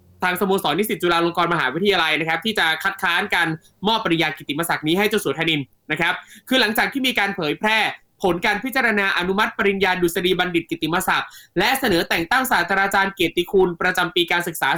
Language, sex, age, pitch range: Thai, male, 20-39, 175-215 Hz